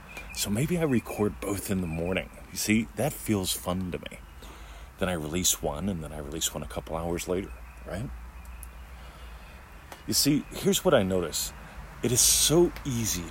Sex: male